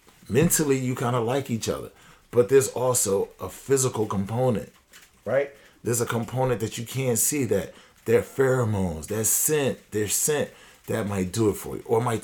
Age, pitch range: 40-59, 100-130 Hz